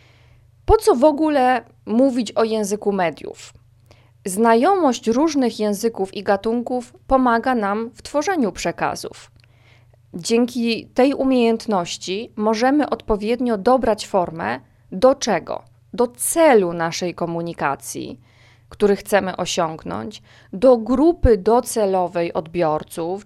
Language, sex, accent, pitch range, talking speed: Polish, female, native, 165-240 Hz, 100 wpm